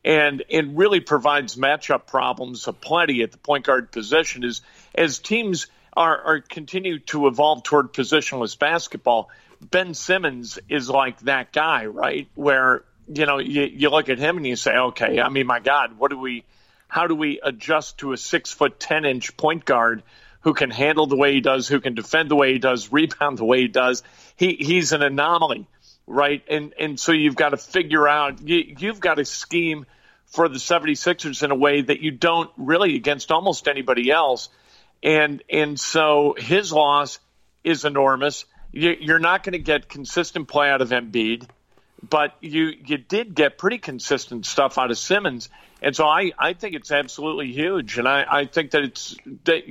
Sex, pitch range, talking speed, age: male, 130-160 Hz, 190 wpm, 50-69